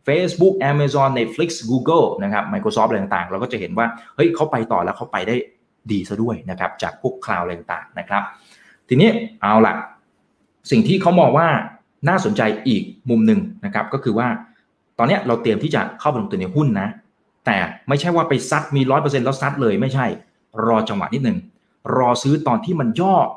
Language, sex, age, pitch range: Thai, male, 20-39, 115-180 Hz